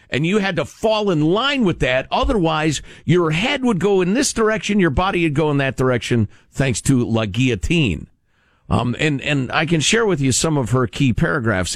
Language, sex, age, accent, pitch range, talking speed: English, male, 50-69, American, 100-155 Hz, 210 wpm